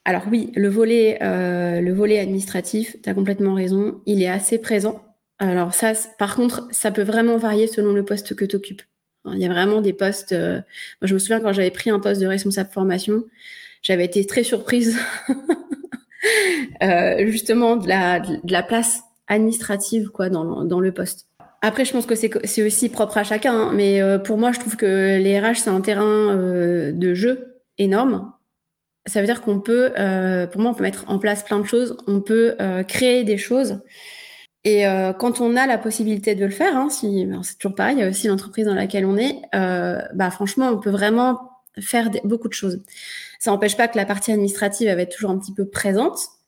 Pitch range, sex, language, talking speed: 195-230 Hz, female, French, 210 wpm